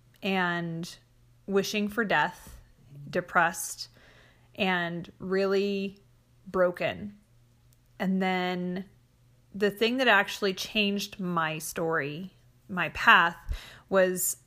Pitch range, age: 160-195 Hz, 30-49